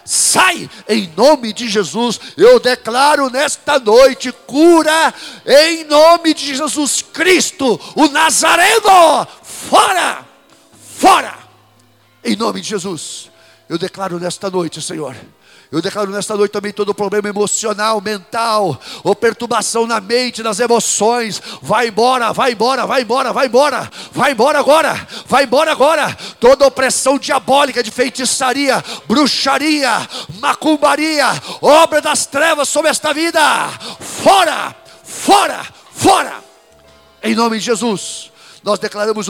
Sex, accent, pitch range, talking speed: male, Brazilian, 210-295 Hz, 120 wpm